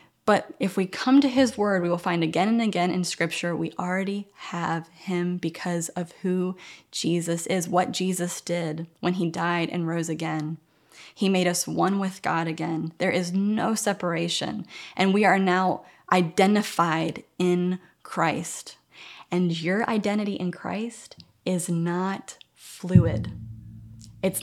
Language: English